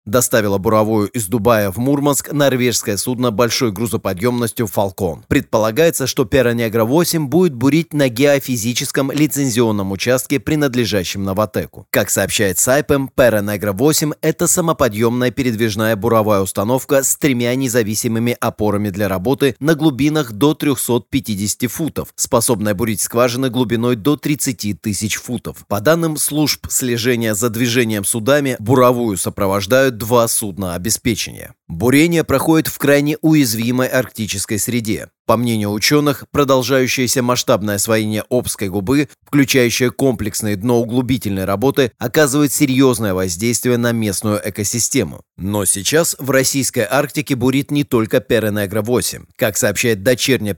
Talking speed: 120 wpm